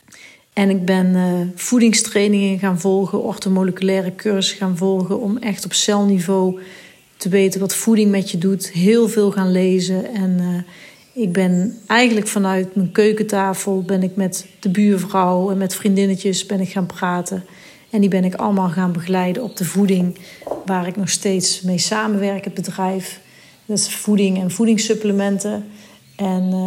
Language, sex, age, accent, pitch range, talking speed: Dutch, female, 40-59, Dutch, 185-210 Hz, 155 wpm